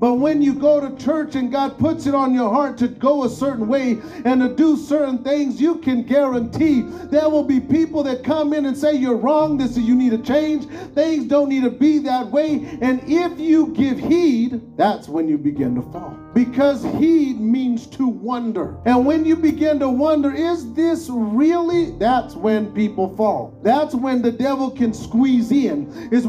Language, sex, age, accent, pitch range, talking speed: English, male, 40-59, American, 245-300 Hz, 200 wpm